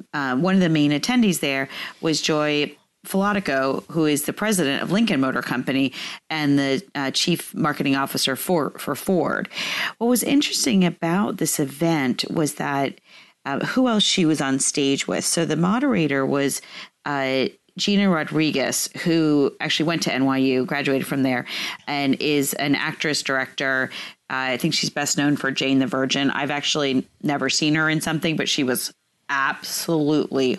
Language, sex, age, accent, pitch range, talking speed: English, female, 40-59, American, 140-180 Hz, 165 wpm